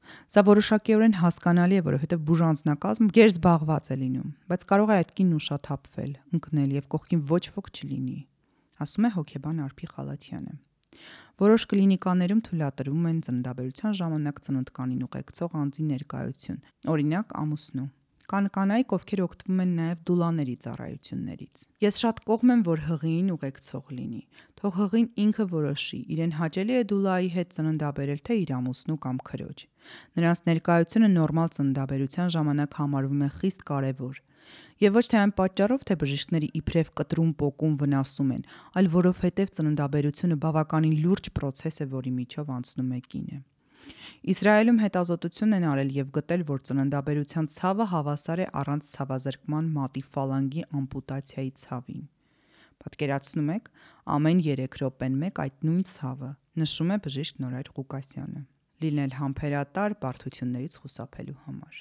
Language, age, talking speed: English, 30-49, 90 wpm